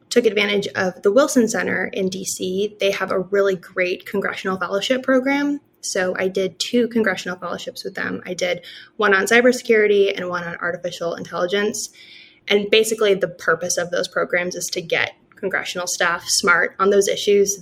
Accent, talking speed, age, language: American, 175 wpm, 20-39, English